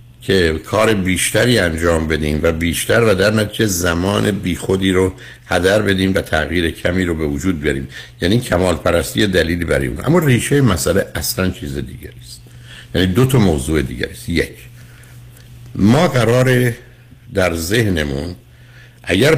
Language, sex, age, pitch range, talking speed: Persian, male, 60-79, 80-120 Hz, 140 wpm